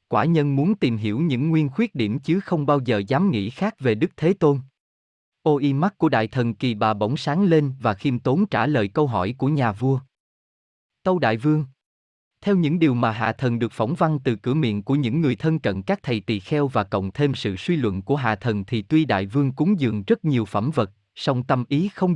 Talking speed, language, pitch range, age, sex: 235 wpm, Vietnamese, 110-155 Hz, 20-39, male